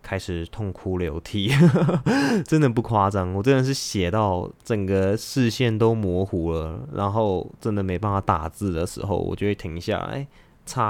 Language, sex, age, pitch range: Chinese, male, 20-39, 95-115 Hz